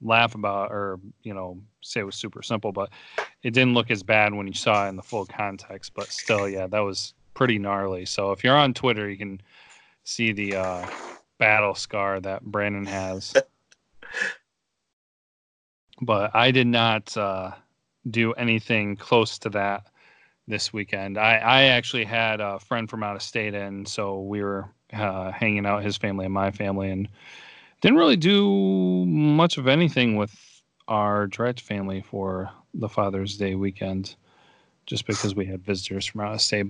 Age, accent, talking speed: 30-49, American, 170 wpm